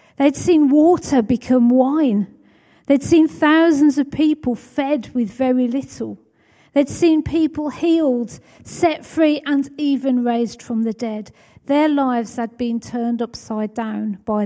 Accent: British